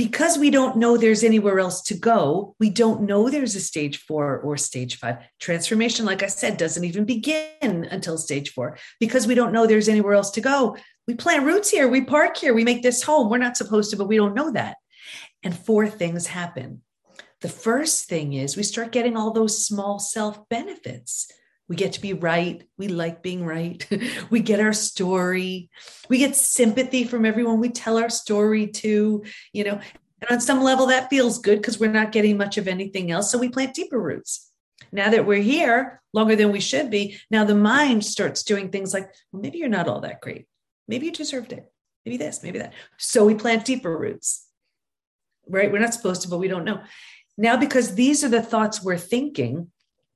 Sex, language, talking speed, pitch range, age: female, English, 205 wpm, 195-245 Hz, 40-59